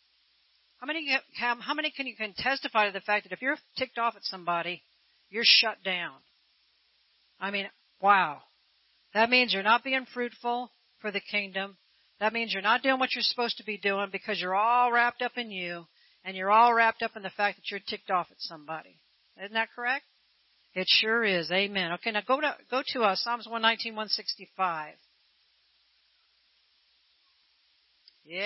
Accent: American